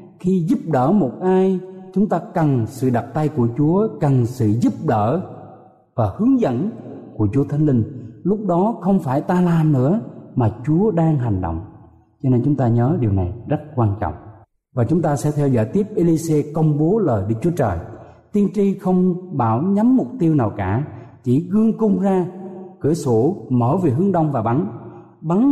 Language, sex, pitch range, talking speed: Vietnamese, male, 130-195 Hz, 195 wpm